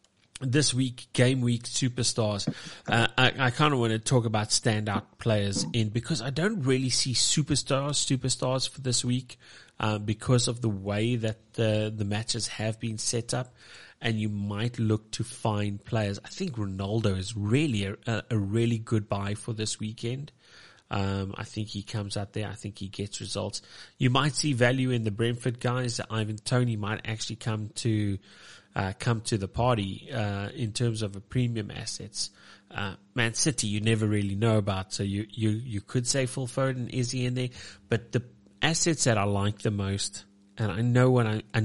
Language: English